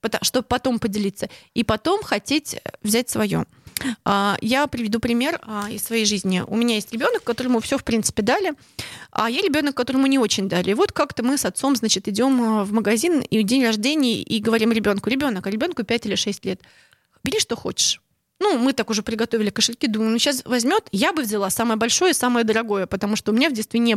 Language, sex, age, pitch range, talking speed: Russian, female, 20-39, 220-275 Hz, 205 wpm